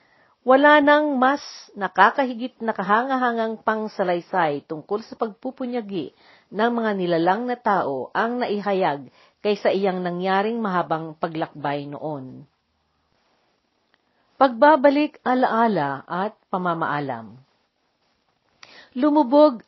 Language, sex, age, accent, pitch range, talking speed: Filipino, female, 50-69, native, 165-235 Hz, 85 wpm